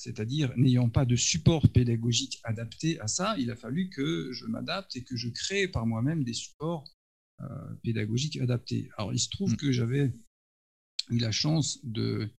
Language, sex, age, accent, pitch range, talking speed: French, male, 50-69, French, 120-145 Hz, 175 wpm